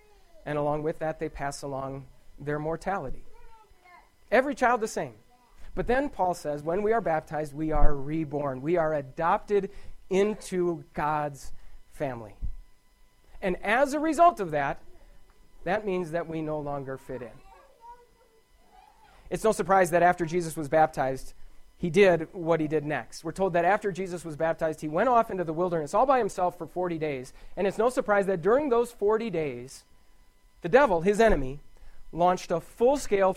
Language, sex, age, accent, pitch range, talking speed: English, male, 40-59, American, 150-200 Hz, 165 wpm